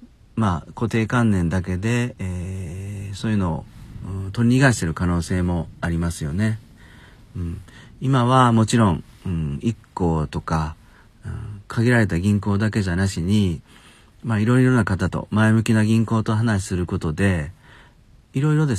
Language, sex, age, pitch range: Japanese, male, 40-59, 90-115 Hz